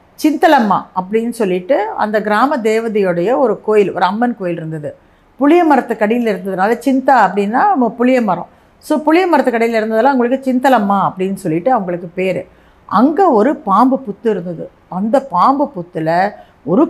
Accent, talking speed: native, 145 wpm